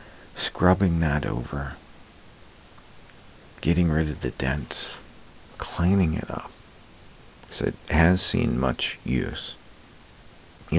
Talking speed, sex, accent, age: 100 wpm, male, American, 50-69